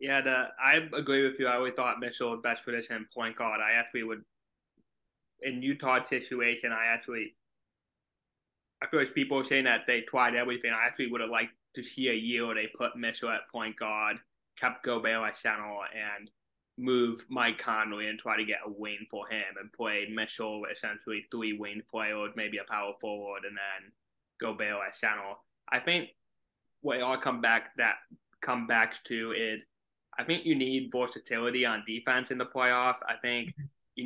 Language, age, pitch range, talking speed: English, 20-39, 110-125 Hz, 185 wpm